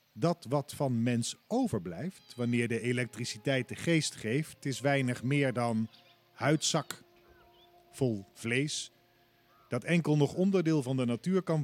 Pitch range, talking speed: 110-150 Hz, 135 wpm